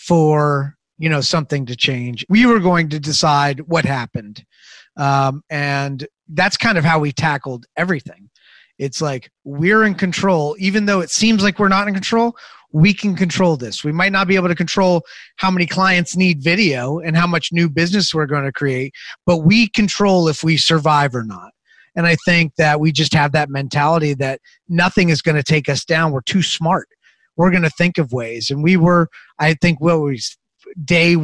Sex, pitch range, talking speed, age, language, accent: male, 150-190 Hz, 195 wpm, 30-49, English, American